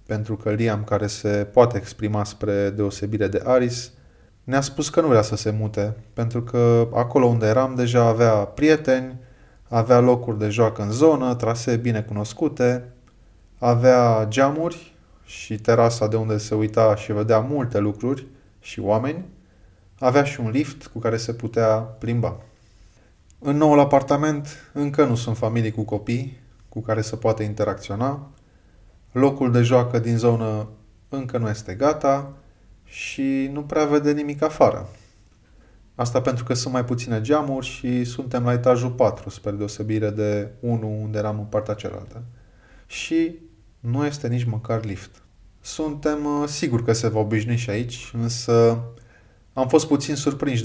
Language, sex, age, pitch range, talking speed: Romanian, male, 20-39, 105-130 Hz, 150 wpm